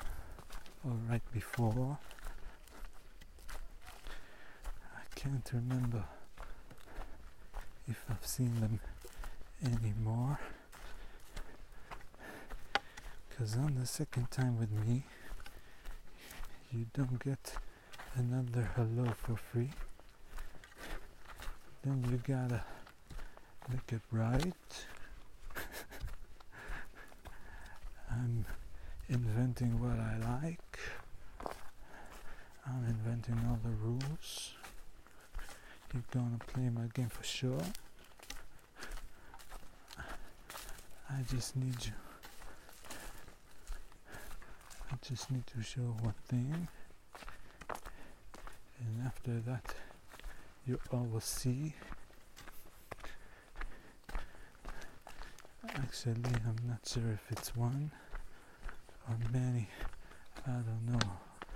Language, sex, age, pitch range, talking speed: Hebrew, male, 60-79, 115-125 Hz, 75 wpm